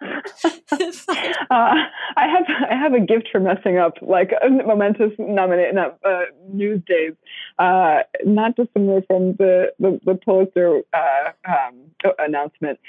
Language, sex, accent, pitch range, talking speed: English, female, American, 165-225 Hz, 130 wpm